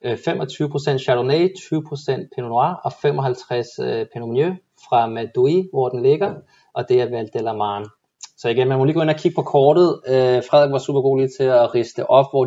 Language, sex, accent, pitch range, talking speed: Danish, male, native, 125-150 Hz, 190 wpm